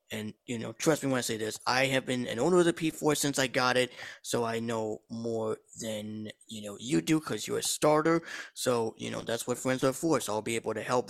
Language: English